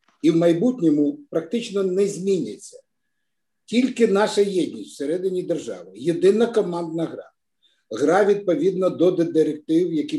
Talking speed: 110 wpm